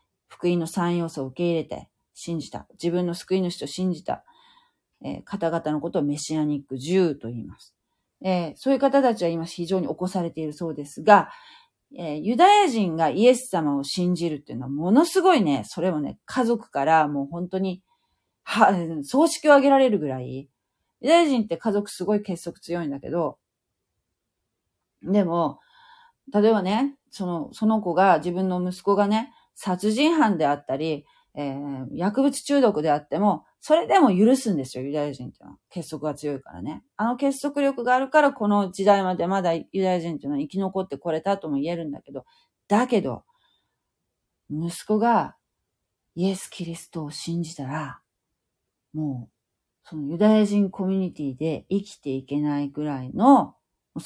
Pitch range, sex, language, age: 150-215 Hz, female, Japanese, 40-59